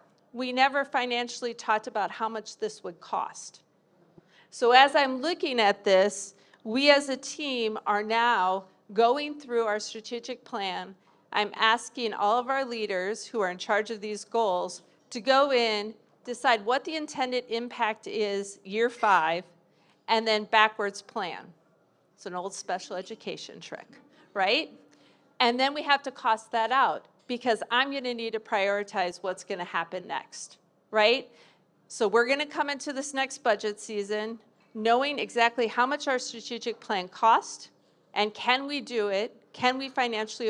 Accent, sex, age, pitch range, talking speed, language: American, female, 50-69, 210-255 Hz, 160 wpm, English